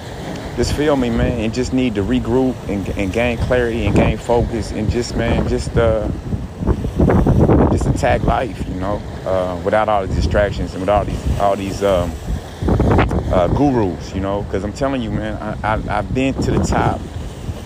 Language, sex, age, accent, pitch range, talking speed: English, male, 30-49, American, 90-120 Hz, 185 wpm